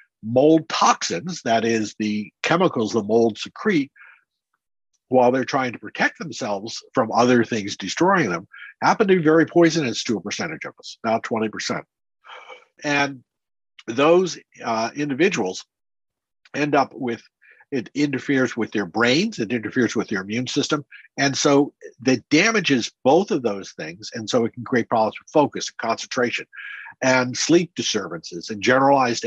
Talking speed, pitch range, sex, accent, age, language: 150 wpm, 115-150 Hz, male, American, 50-69, English